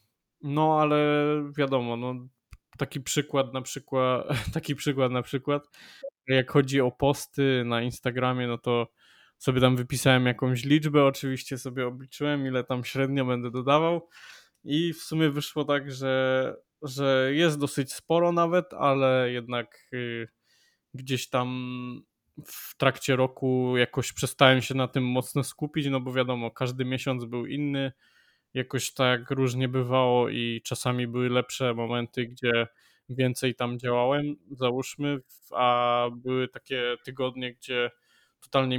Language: Polish